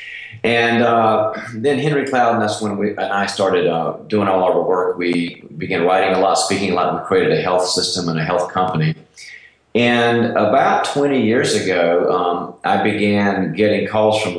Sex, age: male, 40-59